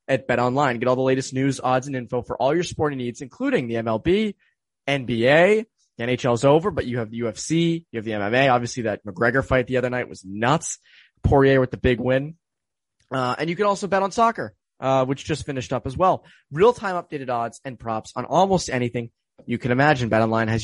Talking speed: 220 wpm